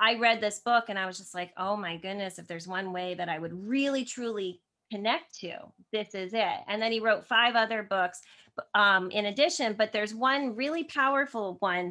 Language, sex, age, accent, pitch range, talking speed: English, female, 30-49, American, 195-230 Hz, 210 wpm